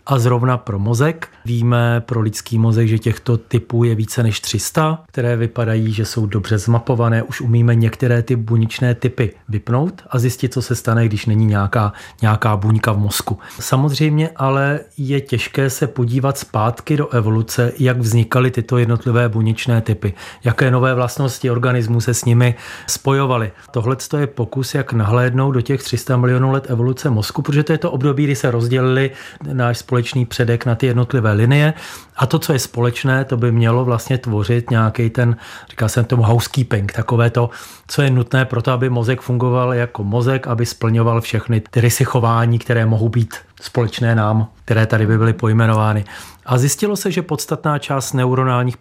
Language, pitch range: Czech, 115-130 Hz